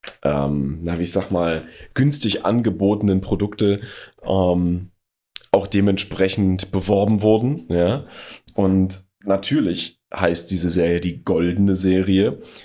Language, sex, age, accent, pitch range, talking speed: German, male, 30-49, German, 95-115 Hz, 110 wpm